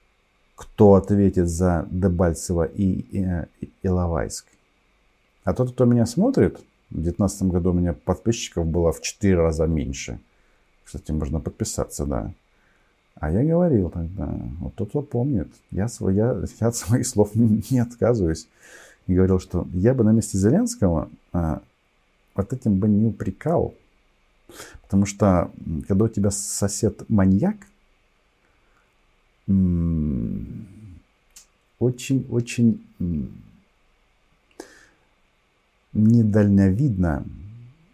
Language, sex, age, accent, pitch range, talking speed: Russian, male, 50-69, native, 90-110 Hz, 110 wpm